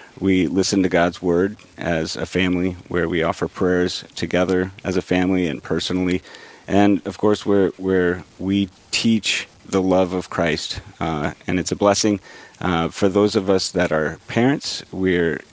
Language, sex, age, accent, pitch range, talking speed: English, male, 40-59, American, 90-100 Hz, 160 wpm